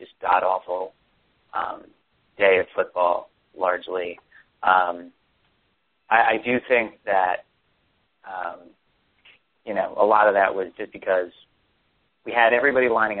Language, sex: English, male